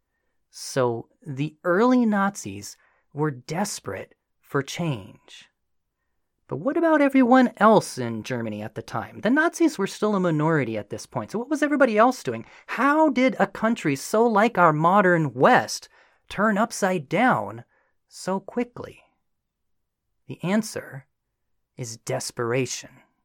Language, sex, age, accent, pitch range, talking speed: English, male, 30-49, American, 130-220 Hz, 130 wpm